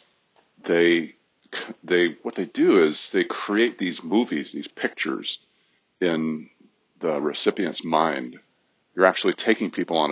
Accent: American